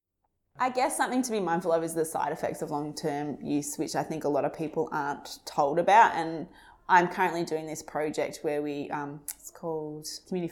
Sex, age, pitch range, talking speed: female, 20-39, 150-165 Hz, 210 wpm